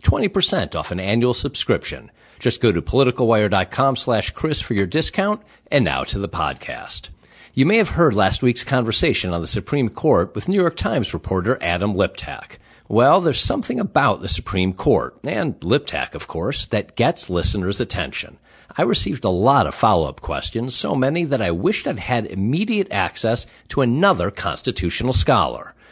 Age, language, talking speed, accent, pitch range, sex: 50-69, English, 165 wpm, American, 95-140 Hz, male